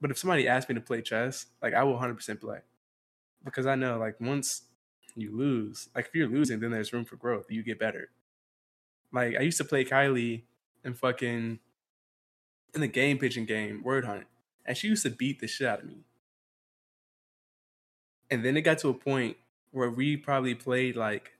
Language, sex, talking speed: English, male, 195 wpm